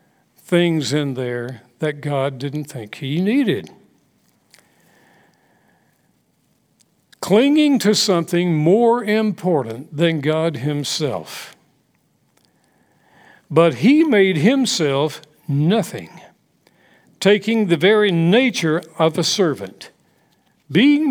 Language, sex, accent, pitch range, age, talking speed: English, male, American, 150-200 Hz, 60-79, 85 wpm